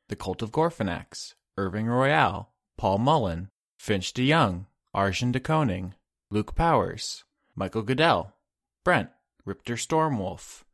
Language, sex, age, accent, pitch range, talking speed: English, male, 20-39, American, 95-140 Hz, 115 wpm